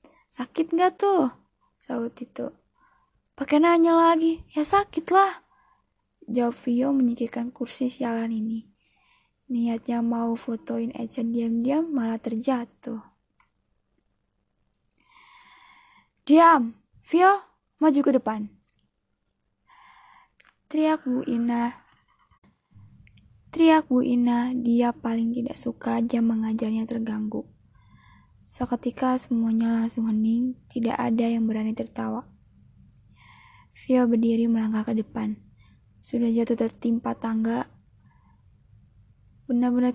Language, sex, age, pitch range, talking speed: Indonesian, female, 10-29, 225-265 Hz, 90 wpm